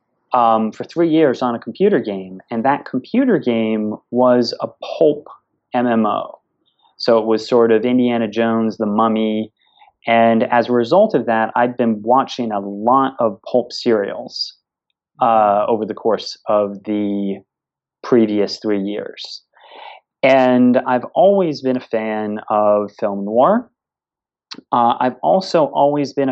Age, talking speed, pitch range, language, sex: 30-49, 145 wpm, 110-130 Hz, English, male